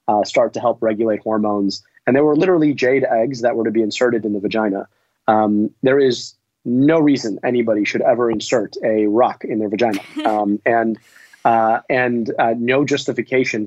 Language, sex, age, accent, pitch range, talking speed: English, male, 30-49, American, 110-125 Hz, 180 wpm